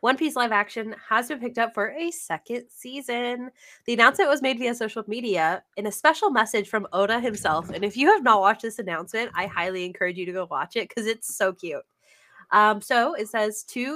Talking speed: 220 wpm